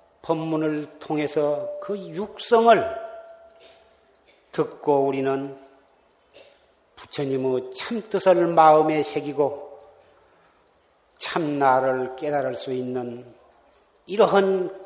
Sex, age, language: male, 40-59, Korean